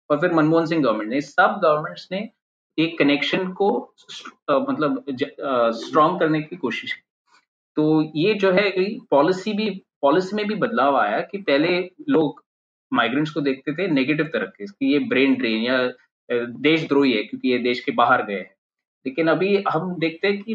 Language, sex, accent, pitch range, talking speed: Hindi, male, native, 140-200 Hz, 165 wpm